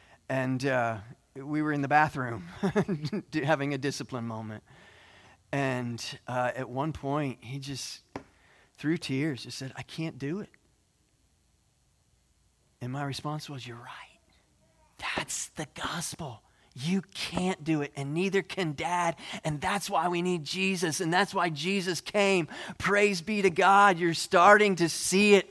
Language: English